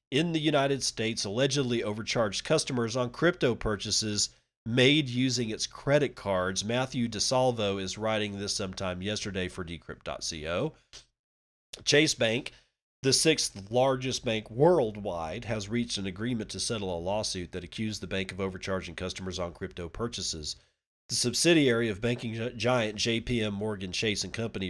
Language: English